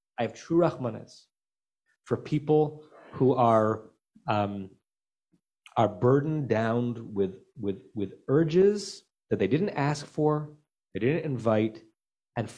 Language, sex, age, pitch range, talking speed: English, male, 30-49, 100-130 Hz, 130 wpm